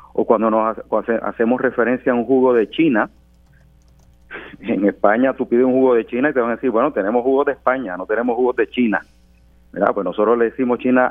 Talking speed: 215 wpm